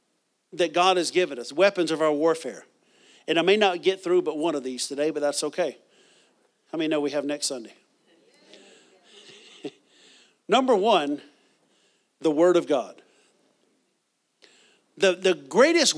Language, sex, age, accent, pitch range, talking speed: English, male, 50-69, American, 150-190 Hz, 145 wpm